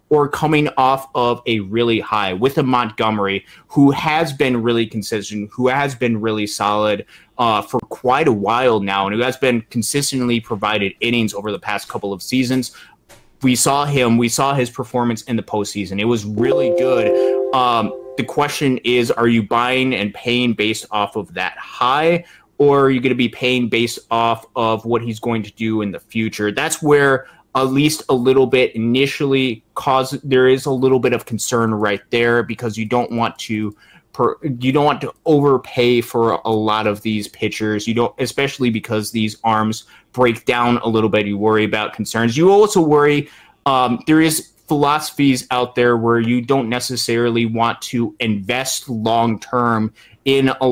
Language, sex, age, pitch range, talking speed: English, male, 20-39, 110-130 Hz, 180 wpm